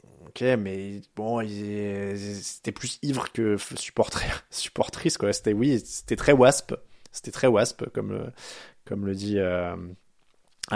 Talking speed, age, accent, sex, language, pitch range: 135 wpm, 20-39, French, male, French, 105-140 Hz